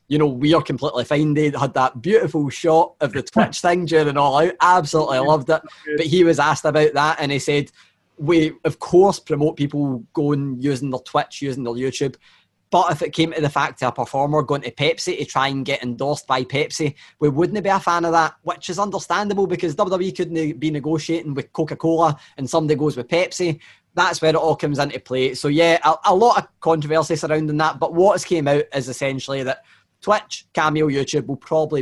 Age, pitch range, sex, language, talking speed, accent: 20-39, 135-165 Hz, male, English, 215 wpm, British